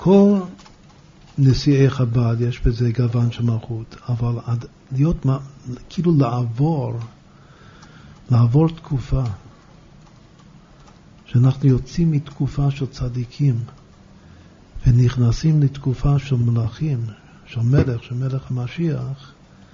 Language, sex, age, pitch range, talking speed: Hebrew, male, 50-69, 120-145 Hz, 90 wpm